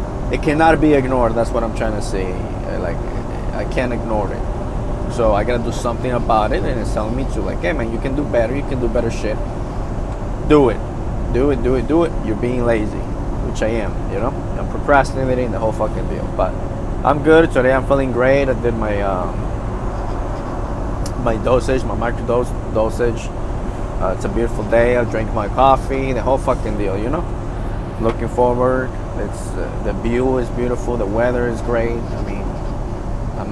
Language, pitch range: English, 110-125 Hz